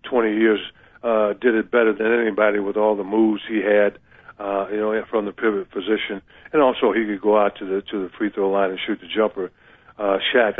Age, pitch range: 50-69, 100-115 Hz